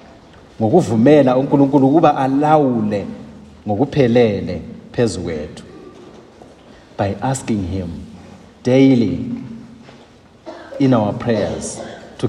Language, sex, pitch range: English, male, 110-135 Hz